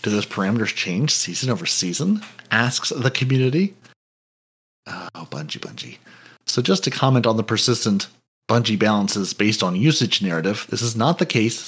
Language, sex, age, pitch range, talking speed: English, male, 40-59, 110-135 Hz, 160 wpm